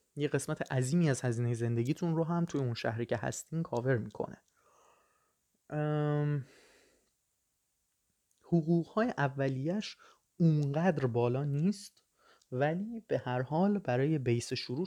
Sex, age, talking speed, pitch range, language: male, 20-39, 115 wpm, 120-160 Hz, Persian